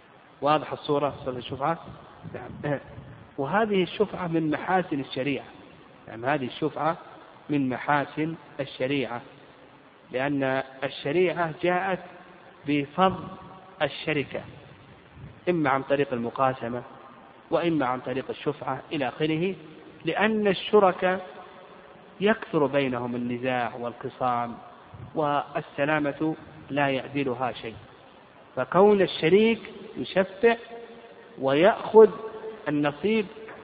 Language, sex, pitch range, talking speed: Arabic, male, 140-175 Hz, 80 wpm